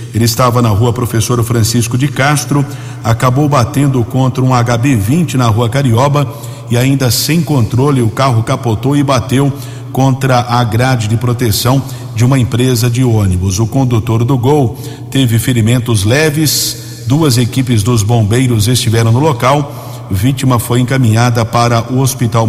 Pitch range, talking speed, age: 115-135 Hz, 150 wpm, 50-69